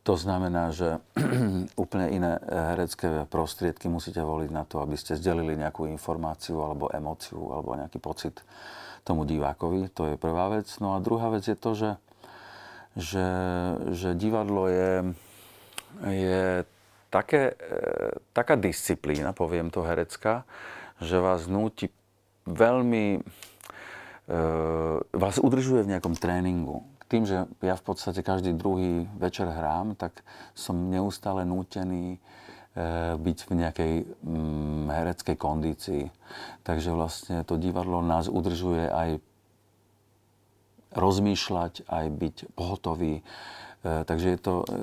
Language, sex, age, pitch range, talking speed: Slovak, male, 40-59, 85-100 Hz, 115 wpm